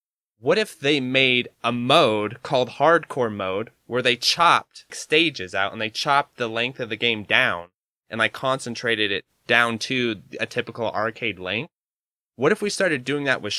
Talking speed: 180 wpm